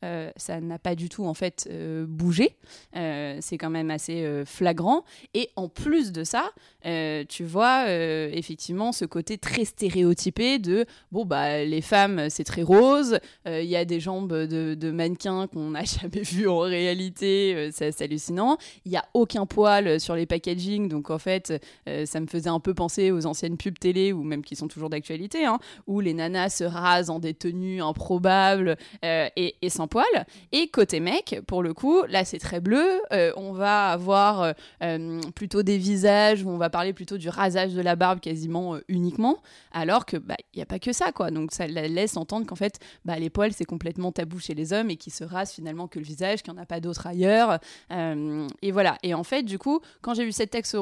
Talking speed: 220 wpm